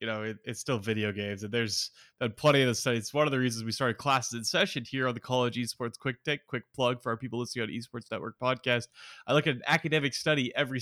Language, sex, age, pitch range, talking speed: English, male, 20-39, 115-135 Hz, 255 wpm